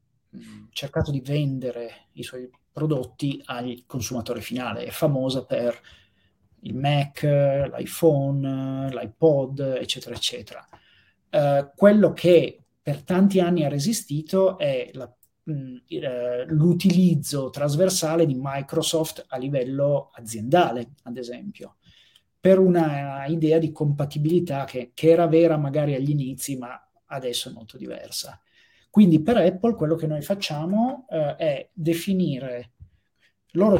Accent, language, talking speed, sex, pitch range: native, Italian, 115 wpm, male, 130-175 Hz